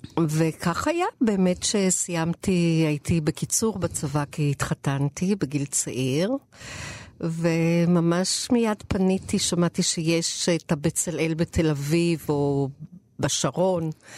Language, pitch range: Hebrew, 145-175 Hz